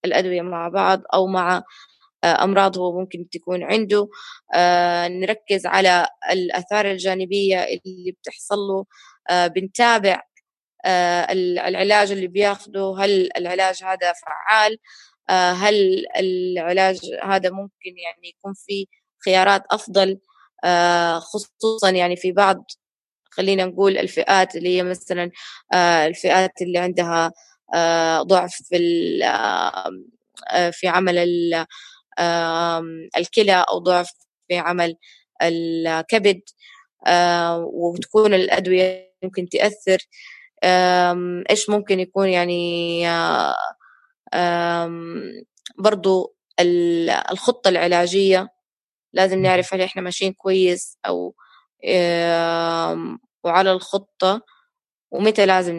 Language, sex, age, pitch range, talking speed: Arabic, female, 20-39, 175-195 Hz, 90 wpm